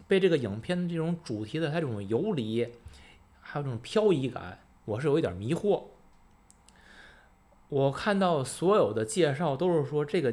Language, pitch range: Chinese, 110-160 Hz